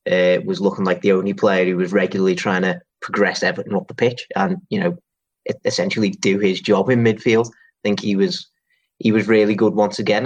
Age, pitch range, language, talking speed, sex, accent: 30-49, 100-125 Hz, English, 210 wpm, male, British